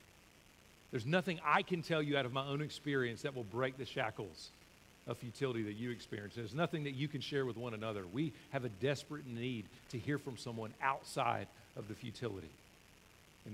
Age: 50-69